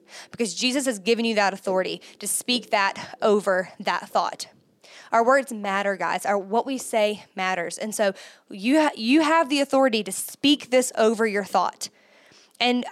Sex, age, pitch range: female, 20-39, 220-280 Hz